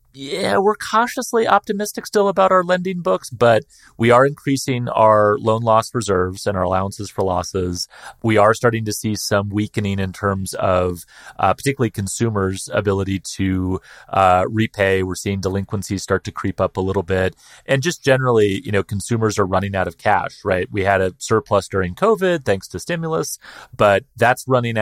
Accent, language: American, English